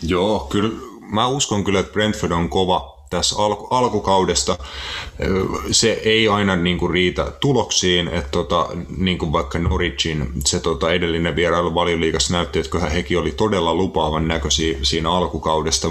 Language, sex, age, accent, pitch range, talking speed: Finnish, male, 30-49, native, 80-90 Hz, 145 wpm